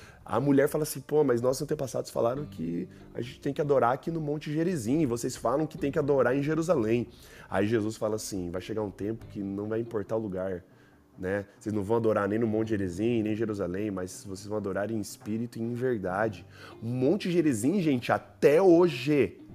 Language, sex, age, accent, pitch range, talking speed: Portuguese, male, 20-39, Brazilian, 100-130 Hz, 210 wpm